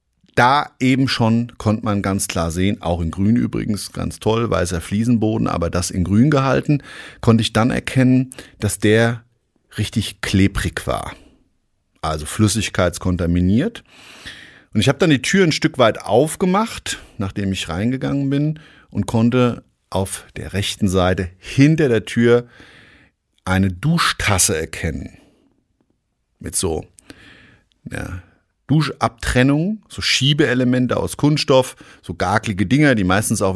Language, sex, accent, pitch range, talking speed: German, male, German, 95-125 Hz, 130 wpm